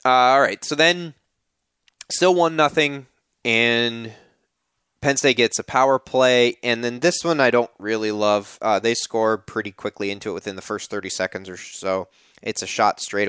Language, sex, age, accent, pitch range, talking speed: English, male, 20-39, American, 105-130 Hz, 180 wpm